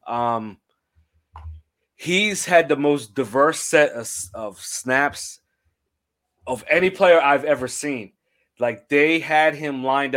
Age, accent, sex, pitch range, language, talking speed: 30-49, American, male, 115-145 Hz, English, 125 wpm